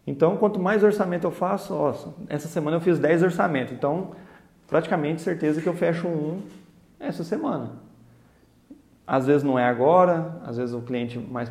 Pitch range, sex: 130-170 Hz, male